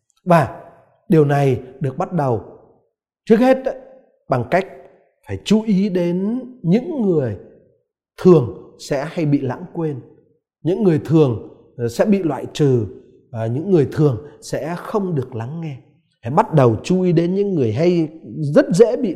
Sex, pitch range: male, 130-200 Hz